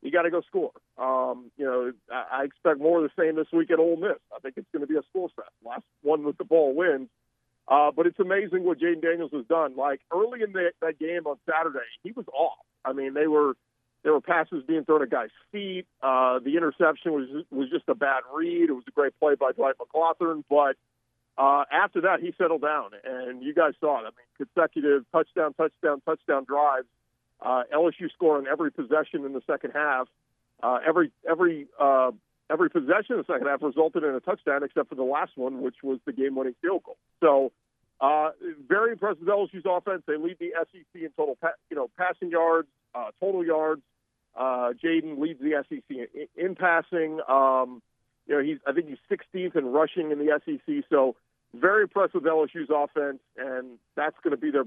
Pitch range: 135-175 Hz